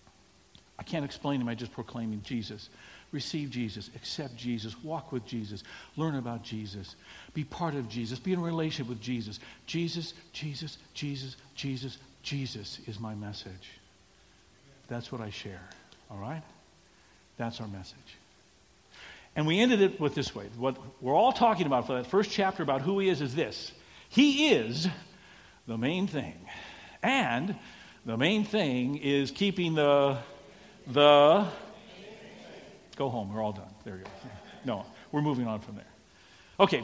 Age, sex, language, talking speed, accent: 60-79, male, English, 155 wpm, American